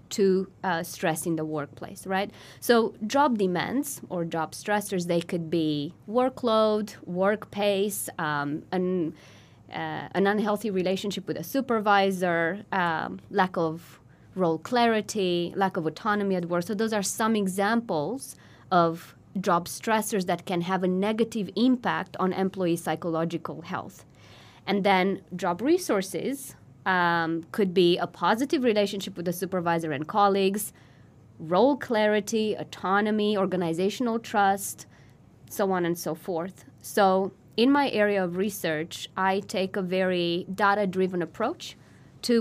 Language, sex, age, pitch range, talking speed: English, female, 20-39, 170-205 Hz, 130 wpm